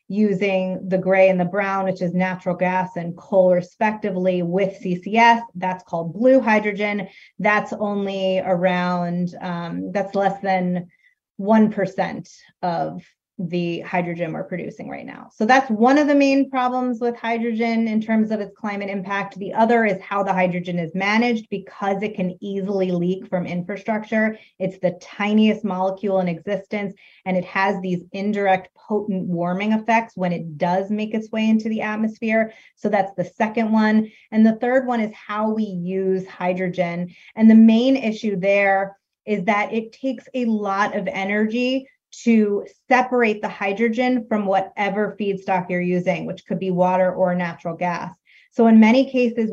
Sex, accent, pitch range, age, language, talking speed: female, American, 185-220 Hz, 30-49, English, 160 wpm